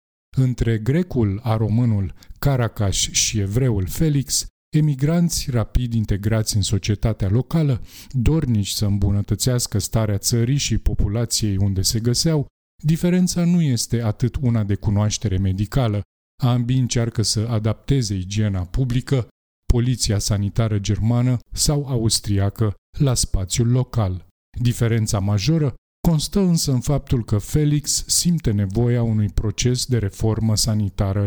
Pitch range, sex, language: 105-125 Hz, male, Romanian